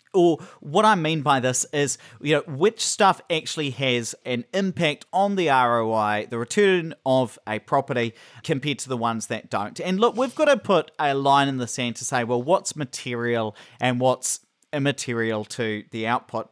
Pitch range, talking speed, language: 125-170 Hz, 185 wpm, English